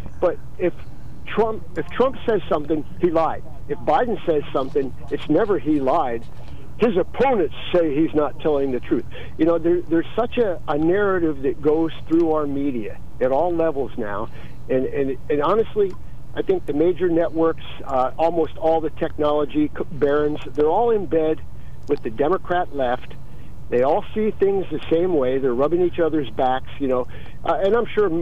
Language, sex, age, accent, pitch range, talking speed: English, male, 50-69, American, 135-170 Hz, 175 wpm